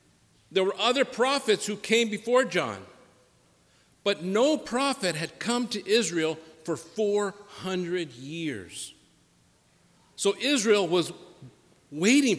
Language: English